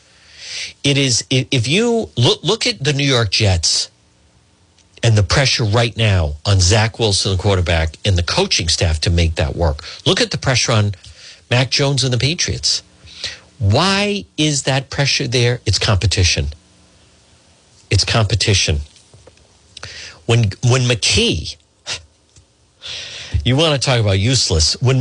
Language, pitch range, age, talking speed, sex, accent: English, 95-135 Hz, 50-69, 140 wpm, male, American